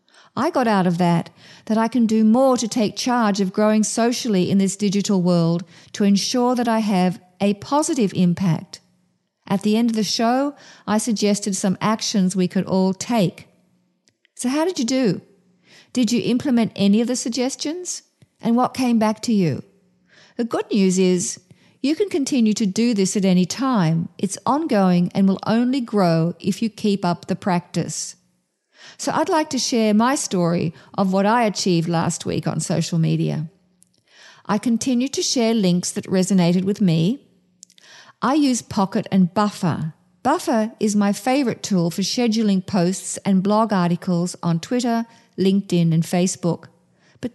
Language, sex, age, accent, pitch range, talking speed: English, female, 50-69, Australian, 180-230 Hz, 165 wpm